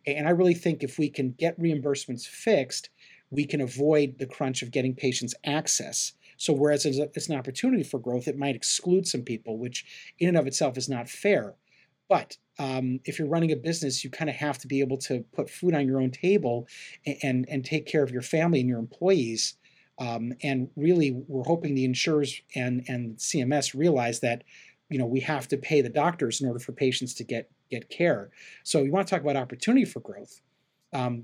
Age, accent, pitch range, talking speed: 40-59, American, 125-150 Hz, 210 wpm